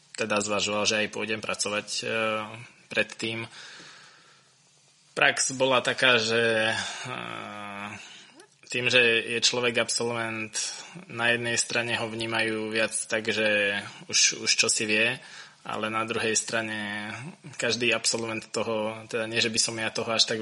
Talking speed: 130 wpm